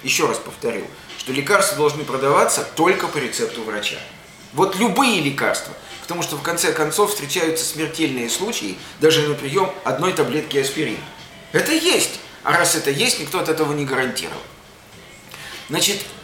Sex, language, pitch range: male, Russian, 150-200 Hz